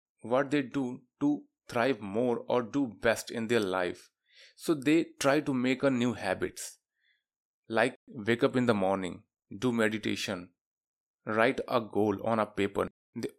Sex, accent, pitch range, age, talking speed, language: male, native, 110-135 Hz, 30-49, 155 wpm, Hindi